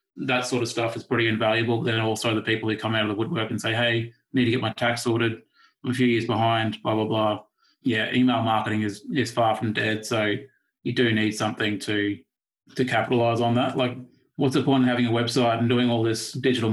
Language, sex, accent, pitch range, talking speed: English, male, Australian, 110-120 Hz, 235 wpm